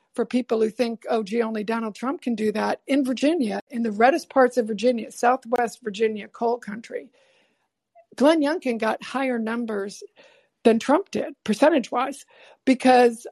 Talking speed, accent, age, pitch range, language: 155 wpm, American, 60-79, 220-275 Hz, English